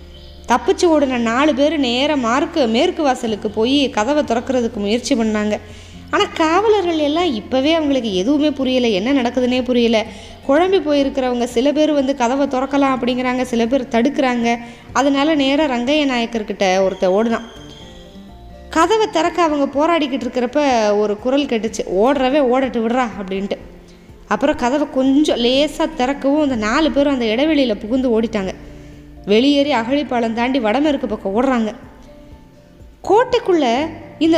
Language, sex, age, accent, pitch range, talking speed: Tamil, female, 20-39, native, 225-290 Hz, 125 wpm